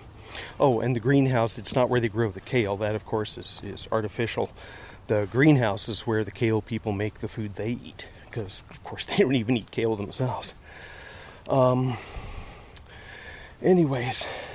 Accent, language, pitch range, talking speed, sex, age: American, English, 105-125 Hz, 165 wpm, male, 30-49